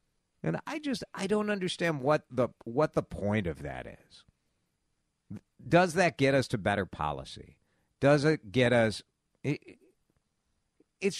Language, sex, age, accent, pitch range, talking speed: English, male, 50-69, American, 110-165 Hz, 140 wpm